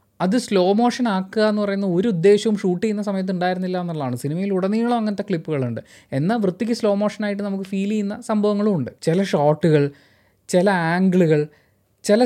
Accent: native